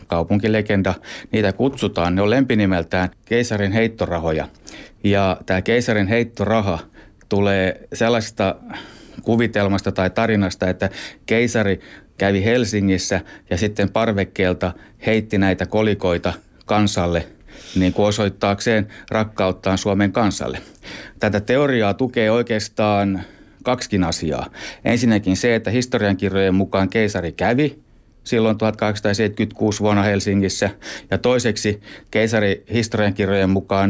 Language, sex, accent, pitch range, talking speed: Finnish, male, native, 95-110 Hz, 100 wpm